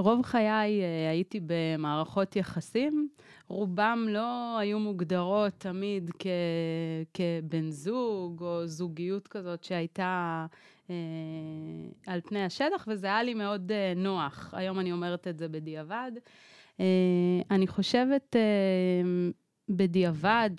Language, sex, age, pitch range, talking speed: Hebrew, female, 30-49, 175-220 Hz, 115 wpm